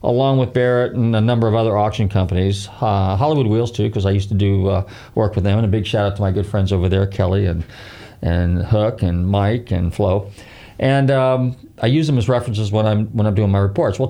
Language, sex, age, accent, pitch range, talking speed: English, male, 40-59, American, 100-130 Hz, 240 wpm